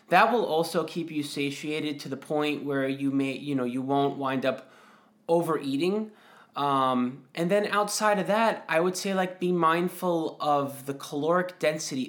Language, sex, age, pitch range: English, male, 20-39, 135-170 Hz